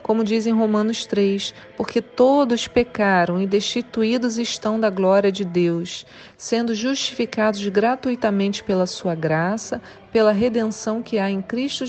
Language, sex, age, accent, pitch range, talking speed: Portuguese, female, 40-59, Brazilian, 195-240 Hz, 130 wpm